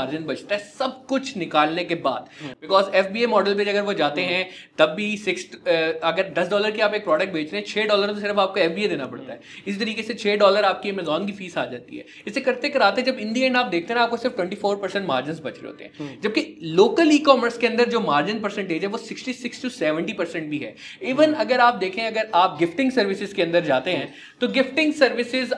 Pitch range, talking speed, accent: 185-250 Hz, 95 wpm, native